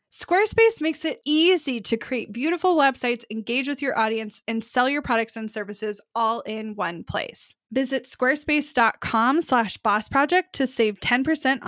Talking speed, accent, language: 150 wpm, American, English